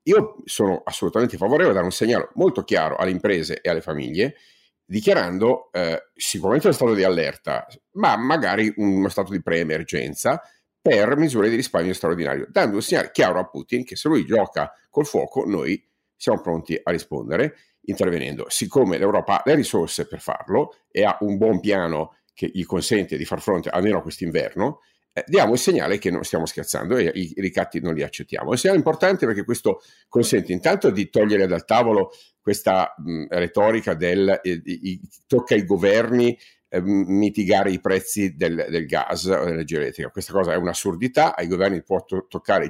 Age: 50-69